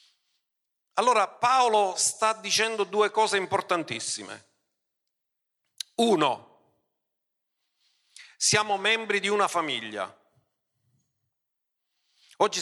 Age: 40-59